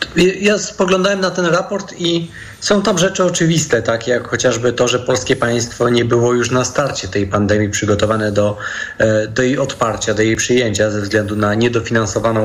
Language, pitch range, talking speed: Polish, 115-135 Hz, 175 wpm